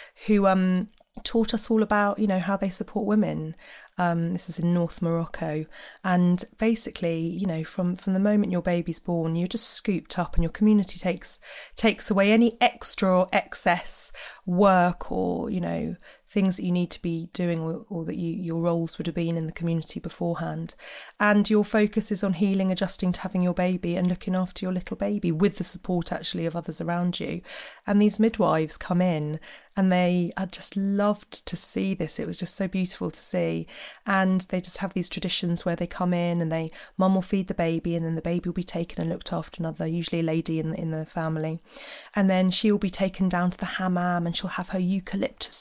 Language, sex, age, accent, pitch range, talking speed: English, female, 20-39, British, 175-200 Hz, 215 wpm